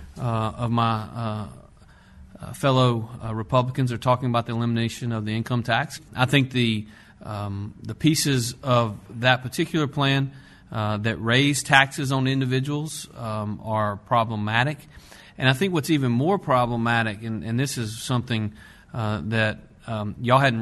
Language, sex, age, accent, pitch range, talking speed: English, male, 40-59, American, 110-130 Hz, 150 wpm